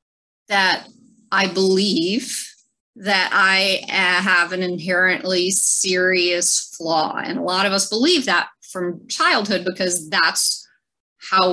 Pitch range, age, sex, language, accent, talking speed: 180-225 Hz, 30-49, female, English, American, 120 wpm